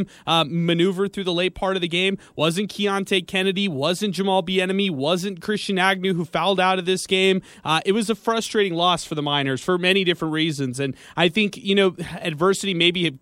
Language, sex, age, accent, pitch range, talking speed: English, male, 30-49, American, 155-195 Hz, 205 wpm